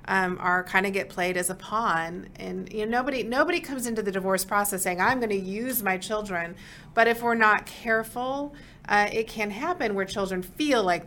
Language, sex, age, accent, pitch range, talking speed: English, female, 40-59, American, 175-210 Hz, 205 wpm